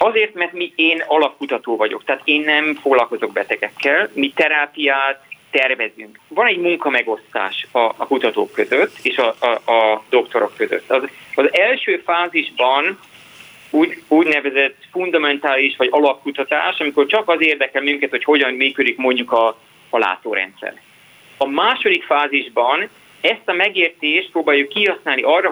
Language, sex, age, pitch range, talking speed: Hungarian, male, 30-49, 135-170 Hz, 135 wpm